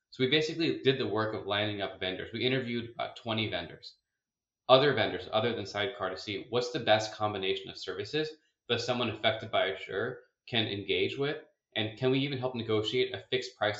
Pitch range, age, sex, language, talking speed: 105-130 Hz, 20-39, male, English, 195 wpm